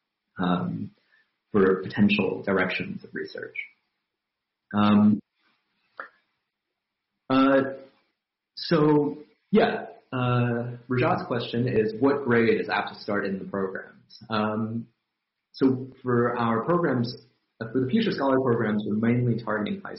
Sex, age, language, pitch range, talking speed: male, 30-49, English, 100-130 Hz, 115 wpm